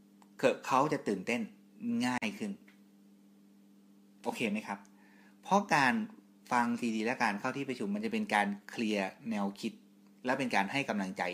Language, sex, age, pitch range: Thai, male, 30-49, 100-125 Hz